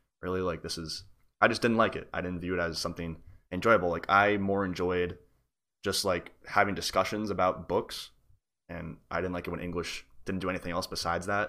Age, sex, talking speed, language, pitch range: 20-39, male, 205 wpm, English, 85-100 Hz